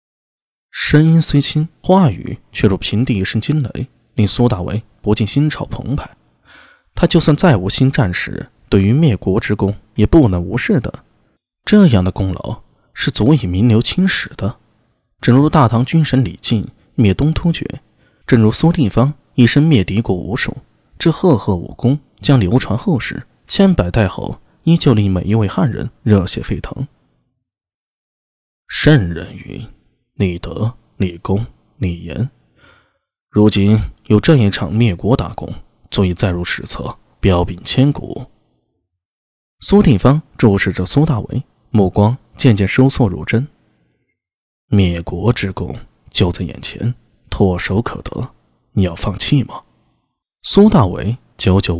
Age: 20-39